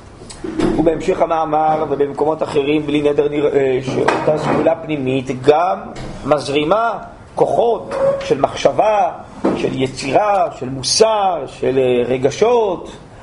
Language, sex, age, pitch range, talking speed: Hebrew, male, 40-59, 130-175 Hz, 95 wpm